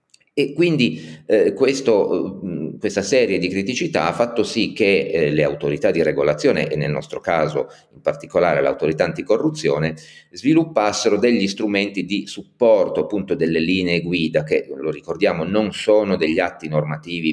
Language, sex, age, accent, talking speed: Italian, male, 40-59, native, 140 wpm